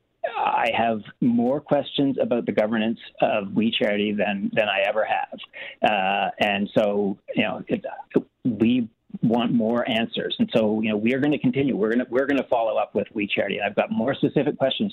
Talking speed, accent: 205 wpm, American